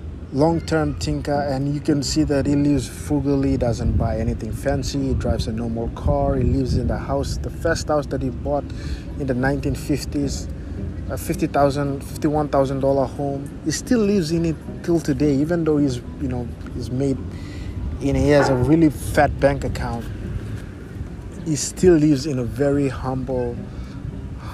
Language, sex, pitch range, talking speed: English, male, 100-140 Hz, 175 wpm